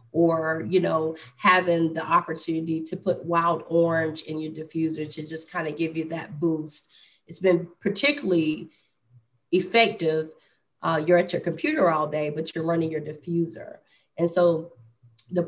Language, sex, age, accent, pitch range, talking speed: English, female, 30-49, American, 160-175 Hz, 155 wpm